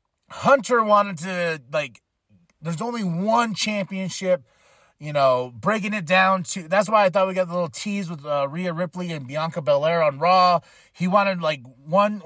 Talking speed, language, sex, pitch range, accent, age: 175 wpm, English, male, 160-210 Hz, American, 30-49